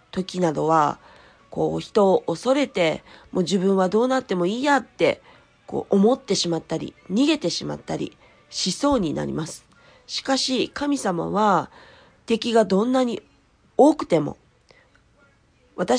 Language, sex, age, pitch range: Japanese, female, 40-59, 180-255 Hz